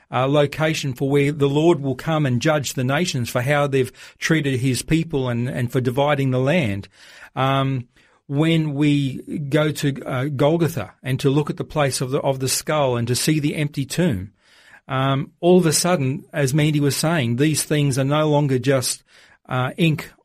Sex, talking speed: male, 195 wpm